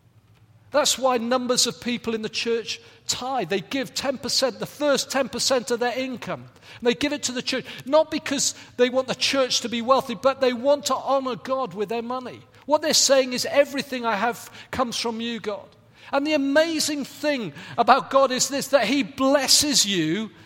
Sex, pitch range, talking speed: male, 210-275 Hz, 195 wpm